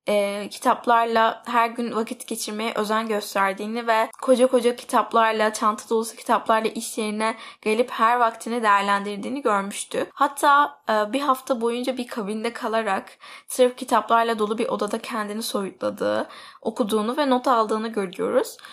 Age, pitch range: 10-29, 215-255 Hz